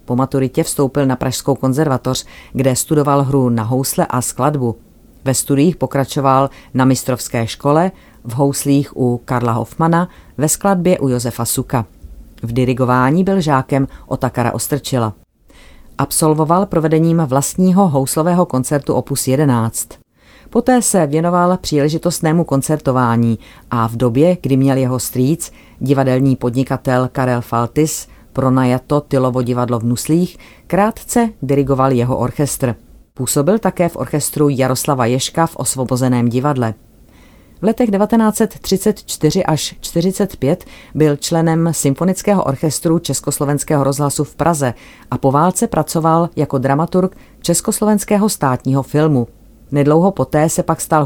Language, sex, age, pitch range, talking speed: Czech, female, 40-59, 130-165 Hz, 120 wpm